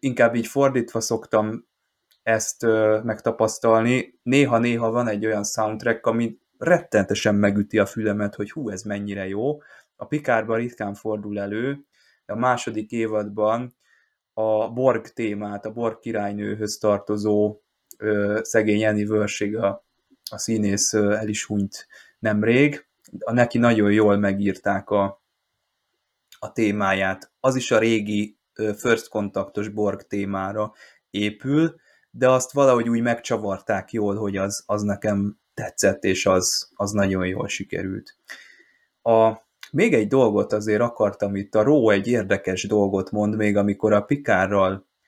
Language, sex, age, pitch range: Hungarian, male, 20-39, 100-115 Hz